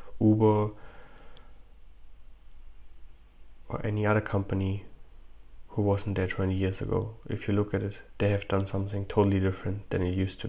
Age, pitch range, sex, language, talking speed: 20-39, 95-105 Hz, male, English, 150 wpm